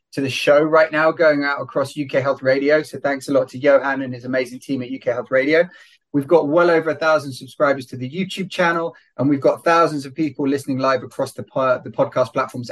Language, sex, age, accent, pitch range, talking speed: English, male, 30-49, British, 130-160 Hz, 230 wpm